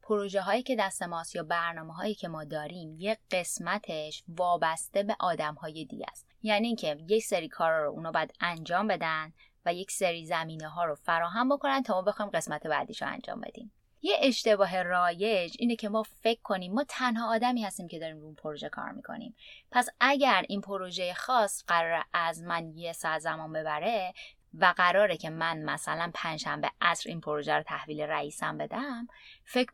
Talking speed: 180 wpm